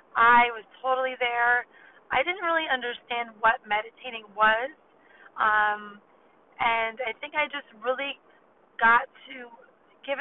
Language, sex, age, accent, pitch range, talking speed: English, female, 30-49, American, 220-265 Hz, 125 wpm